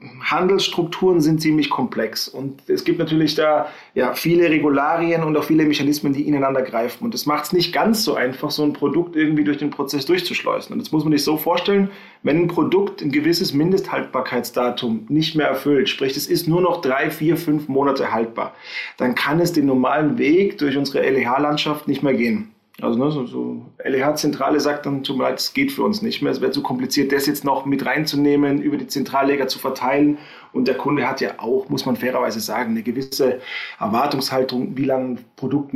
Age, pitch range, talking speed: 30-49, 140-170 Hz, 195 wpm